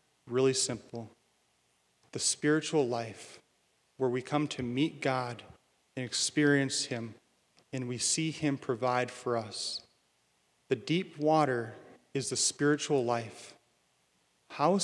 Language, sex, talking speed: English, male, 115 wpm